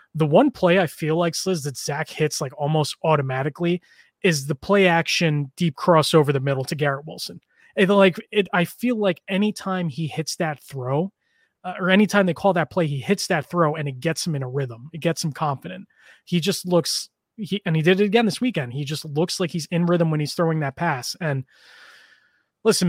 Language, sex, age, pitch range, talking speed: English, male, 20-39, 145-180 Hz, 220 wpm